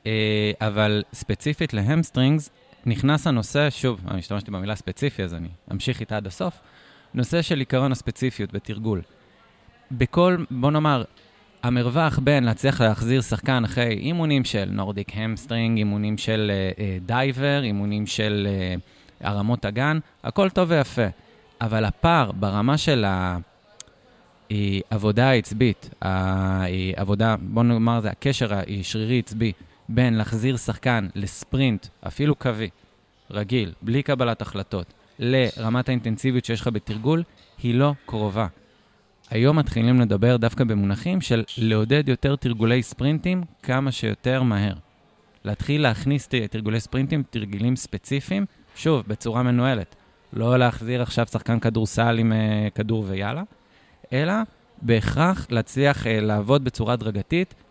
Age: 20-39